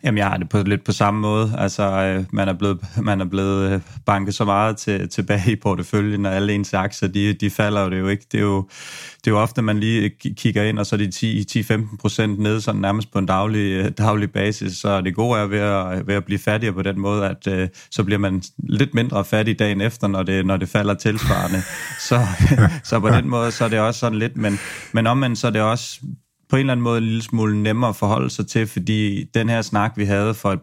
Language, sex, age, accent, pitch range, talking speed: Danish, male, 30-49, native, 95-110 Hz, 250 wpm